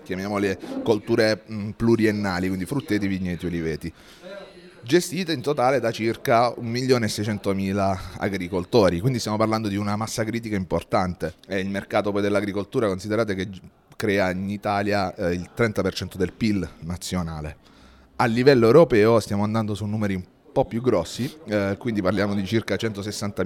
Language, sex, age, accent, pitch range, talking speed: Italian, male, 30-49, native, 95-115 Hz, 145 wpm